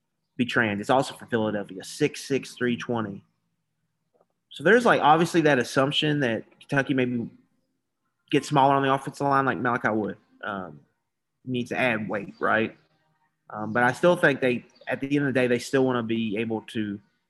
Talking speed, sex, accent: 180 wpm, male, American